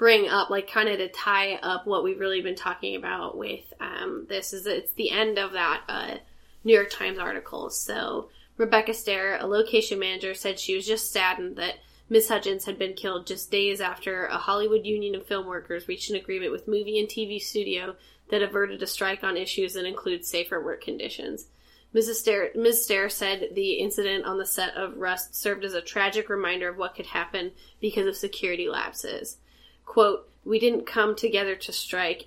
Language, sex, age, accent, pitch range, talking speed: English, female, 10-29, American, 190-225 Hz, 195 wpm